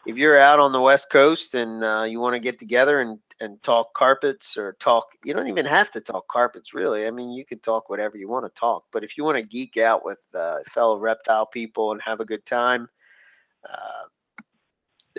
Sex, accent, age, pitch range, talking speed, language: male, American, 30-49, 105-125 Hz, 220 wpm, English